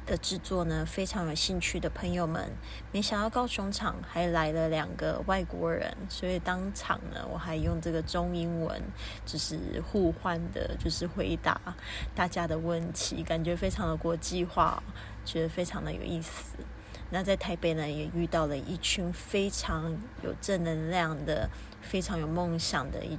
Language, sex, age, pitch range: Chinese, female, 20-39, 160-180 Hz